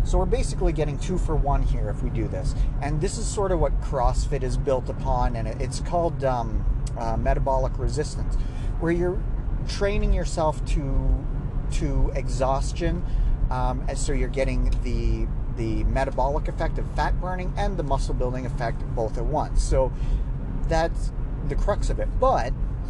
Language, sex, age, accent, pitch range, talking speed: English, male, 40-59, American, 115-140 Hz, 165 wpm